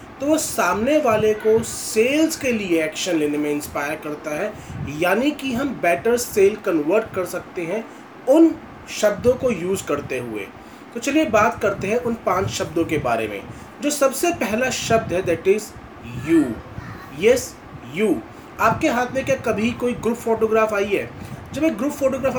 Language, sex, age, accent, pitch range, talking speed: Hindi, male, 30-49, native, 190-265 Hz, 170 wpm